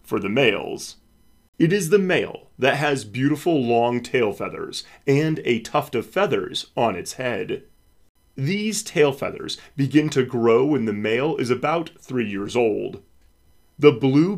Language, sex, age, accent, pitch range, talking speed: English, male, 30-49, American, 110-145 Hz, 150 wpm